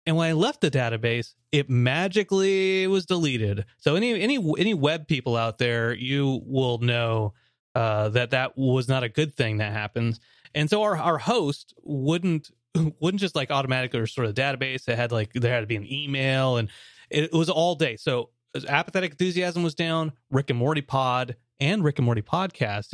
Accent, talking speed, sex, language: American, 190 wpm, male, English